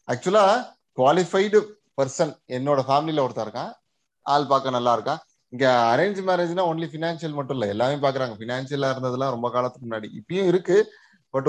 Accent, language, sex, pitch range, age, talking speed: native, Tamil, male, 120-165 Hz, 30-49, 145 wpm